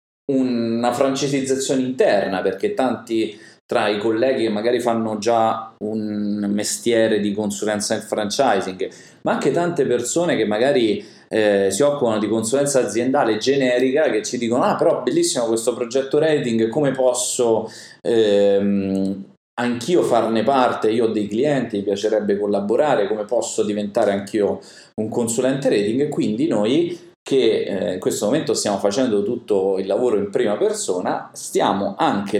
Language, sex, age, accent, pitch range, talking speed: Italian, male, 30-49, native, 100-125 Hz, 140 wpm